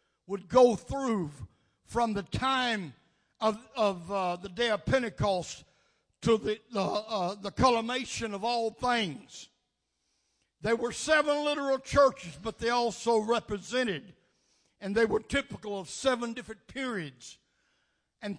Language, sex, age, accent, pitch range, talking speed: English, male, 60-79, American, 210-280 Hz, 130 wpm